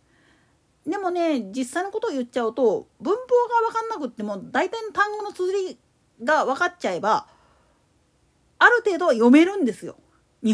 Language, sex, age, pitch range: Japanese, female, 40-59, 245-385 Hz